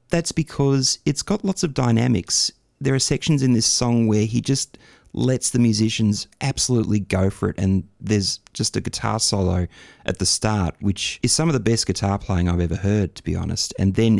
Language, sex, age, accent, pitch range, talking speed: English, male, 30-49, Australian, 90-110 Hz, 205 wpm